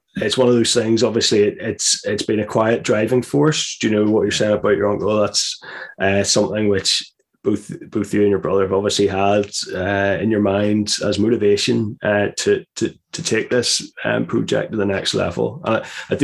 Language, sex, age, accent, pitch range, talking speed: English, male, 20-39, British, 100-125 Hz, 205 wpm